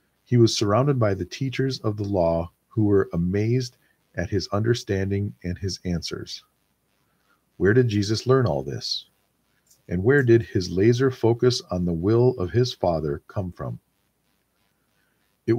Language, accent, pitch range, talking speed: English, American, 90-120 Hz, 150 wpm